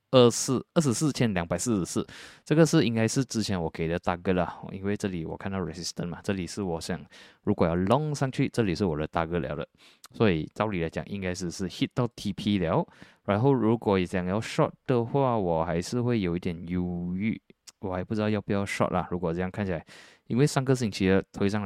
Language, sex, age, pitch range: Chinese, male, 20-39, 90-115 Hz